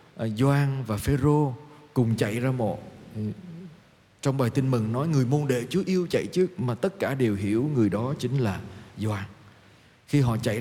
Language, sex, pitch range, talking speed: Vietnamese, male, 110-150 Hz, 180 wpm